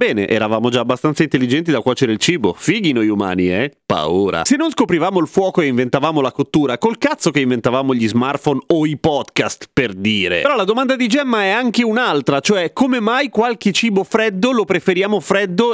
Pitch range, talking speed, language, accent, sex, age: 140-205 Hz, 195 wpm, Italian, native, male, 30-49